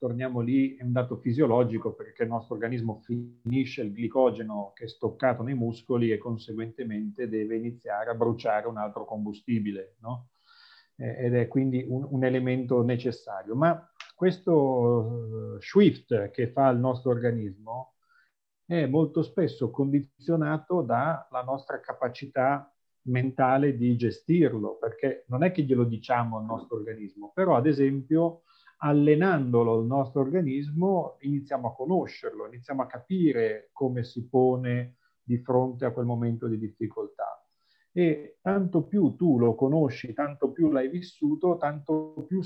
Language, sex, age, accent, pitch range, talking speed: Italian, male, 40-59, native, 115-145 Hz, 135 wpm